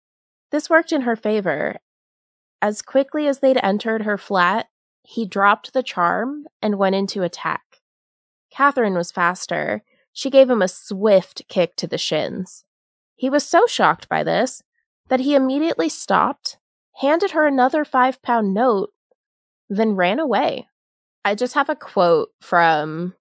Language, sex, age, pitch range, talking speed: English, female, 20-39, 190-285 Hz, 145 wpm